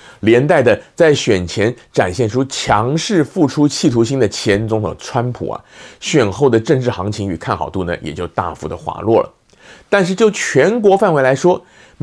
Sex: male